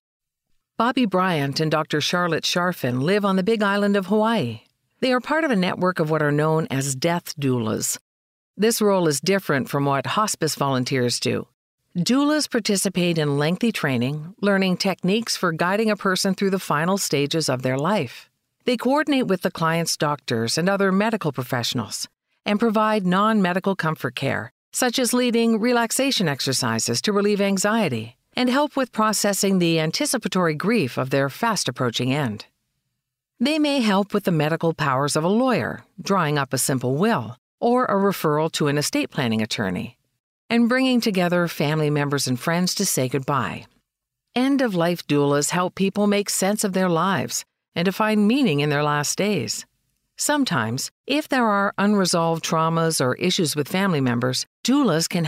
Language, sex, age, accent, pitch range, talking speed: English, female, 50-69, American, 140-210 Hz, 165 wpm